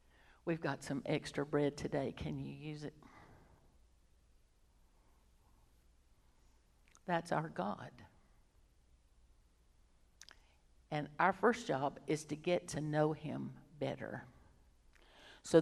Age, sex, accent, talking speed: 60-79, female, American, 95 wpm